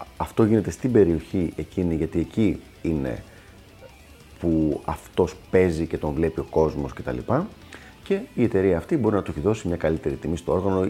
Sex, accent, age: male, native, 30-49